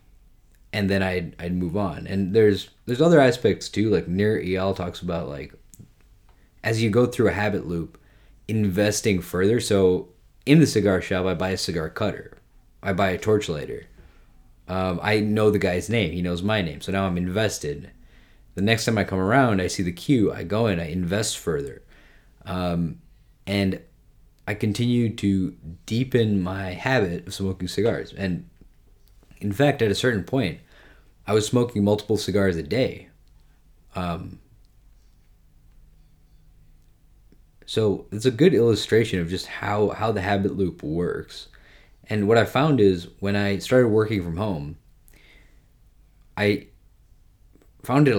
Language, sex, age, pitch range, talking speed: English, male, 20-39, 90-110 Hz, 155 wpm